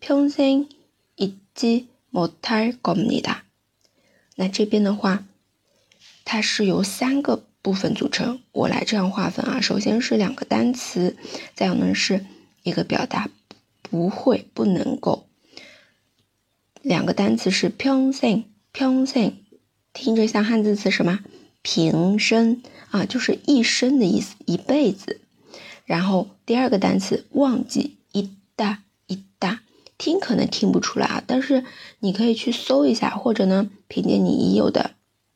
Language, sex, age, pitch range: Chinese, female, 20-39, 195-250 Hz